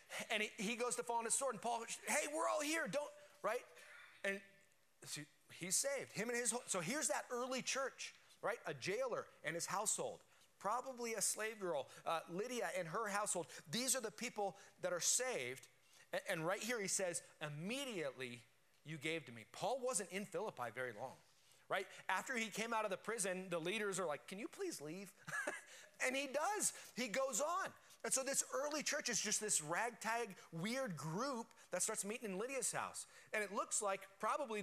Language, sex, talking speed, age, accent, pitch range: English, male, 190 wpm, 30-49, American, 175-245 Hz